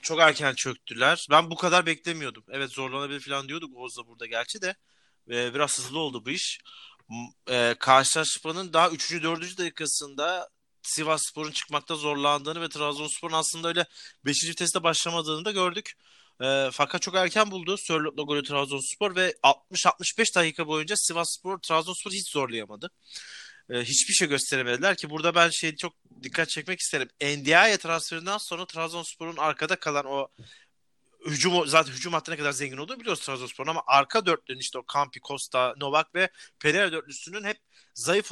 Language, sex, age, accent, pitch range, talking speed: Turkish, male, 30-49, native, 145-180 Hz, 150 wpm